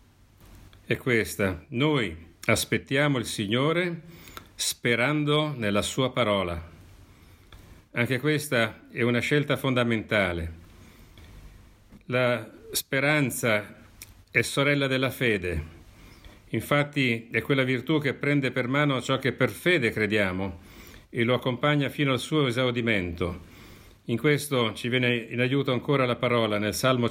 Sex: male